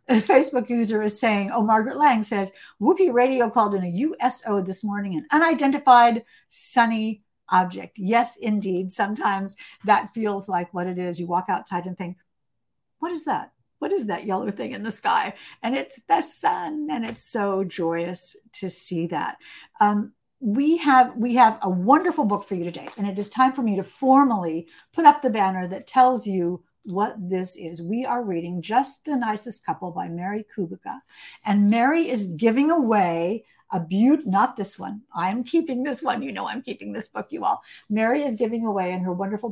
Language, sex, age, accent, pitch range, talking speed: English, female, 50-69, American, 190-255 Hz, 190 wpm